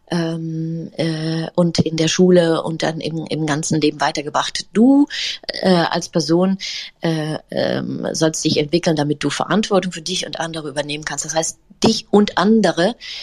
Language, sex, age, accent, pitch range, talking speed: German, female, 30-49, German, 165-210 Hz, 165 wpm